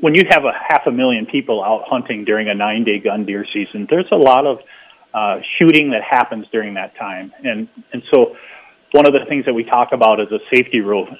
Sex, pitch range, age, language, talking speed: male, 115-170 Hz, 30-49, English, 225 wpm